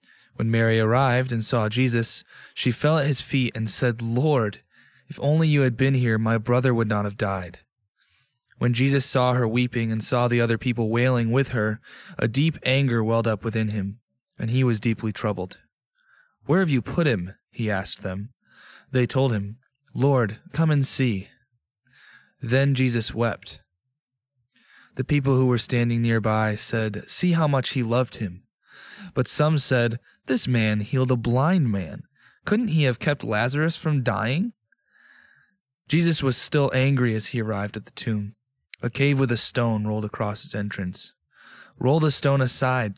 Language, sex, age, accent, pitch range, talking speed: English, male, 20-39, American, 115-140 Hz, 170 wpm